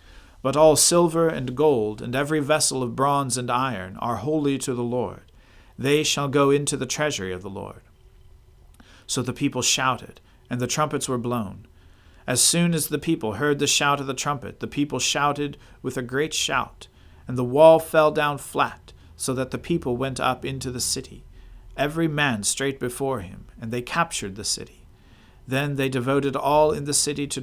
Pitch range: 110-140 Hz